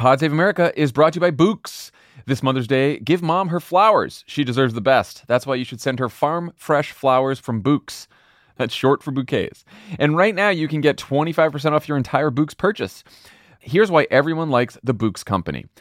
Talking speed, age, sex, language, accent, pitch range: 205 wpm, 30-49, male, English, American, 120-155 Hz